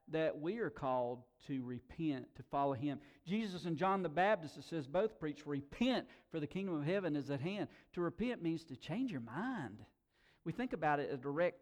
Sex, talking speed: male, 205 wpm